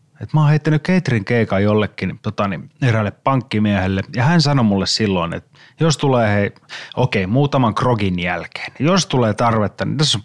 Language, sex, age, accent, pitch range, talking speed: Finnish, male, 30-49, native, 105-145 Hz, 170 wpm